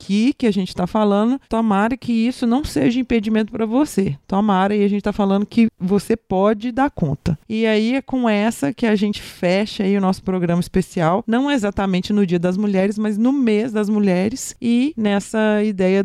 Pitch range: 180-220 Hz